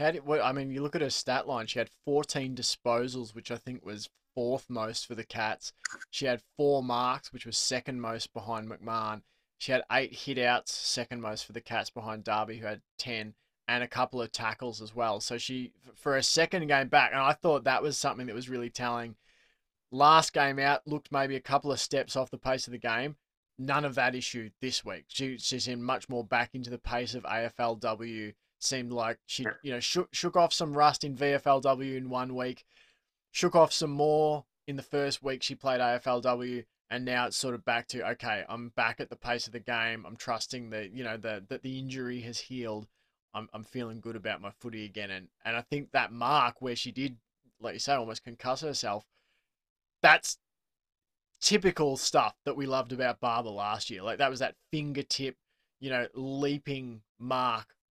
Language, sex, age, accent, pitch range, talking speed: English, male, 20-39, Australian, 115-135 Hz, 205 wpm